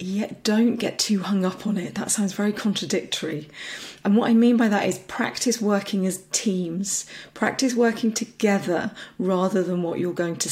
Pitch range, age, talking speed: 185-210 Hz, 30-49, 185 wpm